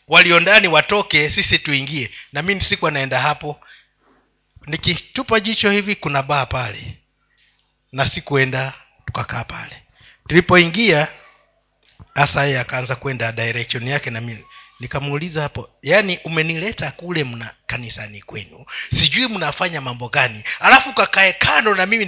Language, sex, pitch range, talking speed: Swahili, male, 125-200 Hz, 125 wpm